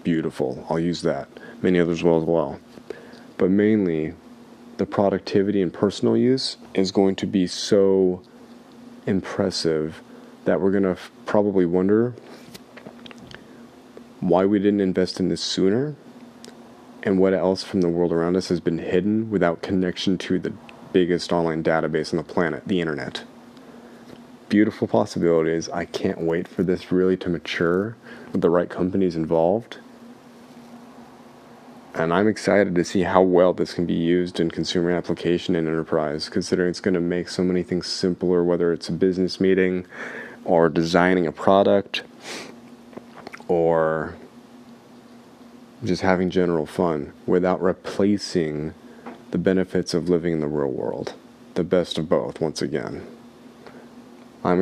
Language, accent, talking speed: English, American, 140 wpm